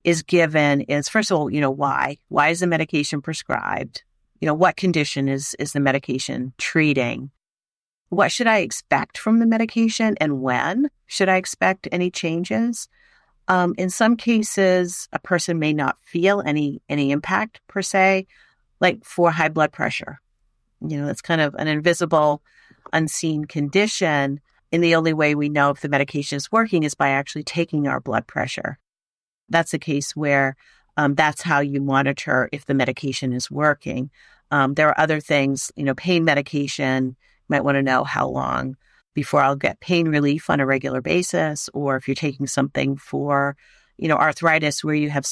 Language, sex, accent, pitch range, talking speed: English, female, American, 140-180 Hz, 175 wpm